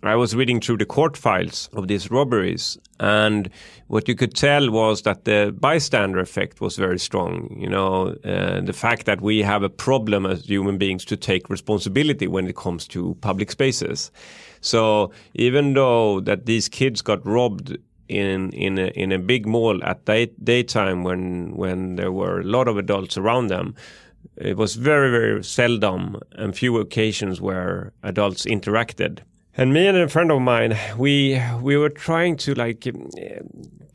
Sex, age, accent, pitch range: male, 30-49, Swedish, 100-130 Hz